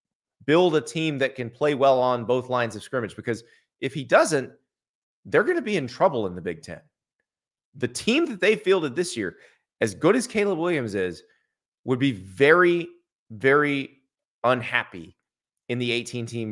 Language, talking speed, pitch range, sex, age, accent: English, 170 wpm, 120-145 Hz, male, 30-49, American